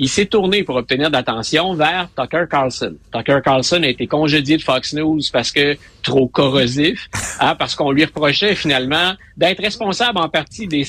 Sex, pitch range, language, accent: male, 140-185 Hz, French, Canadian